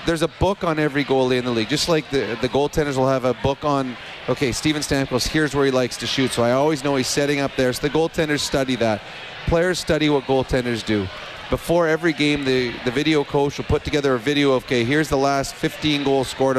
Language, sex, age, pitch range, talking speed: English, male, 30-49, 130-150 Hz, 240 wpm